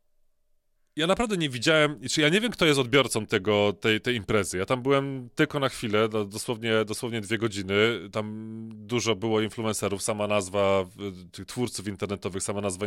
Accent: native